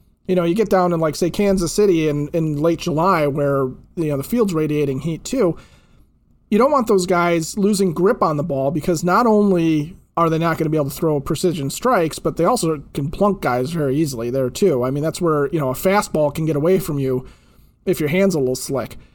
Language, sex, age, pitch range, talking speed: English, male, 40-59, 155-200 Hz, 235 wpm